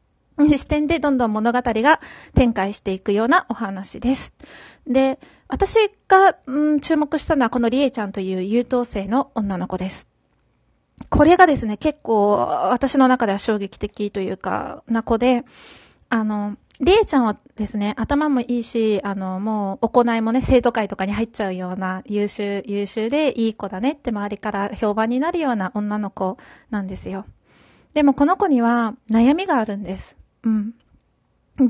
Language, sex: Japanese, female